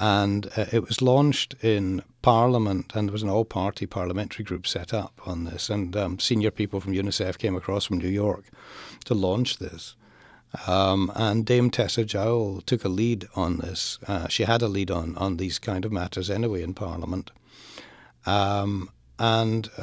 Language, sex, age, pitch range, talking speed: English, male, 60-79, 95-120 Hz, 175 wpm